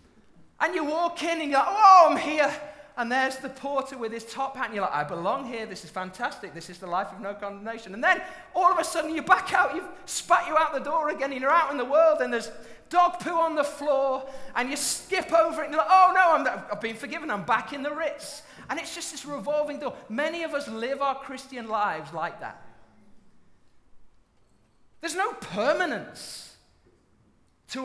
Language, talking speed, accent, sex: English, 220 wpm, British, male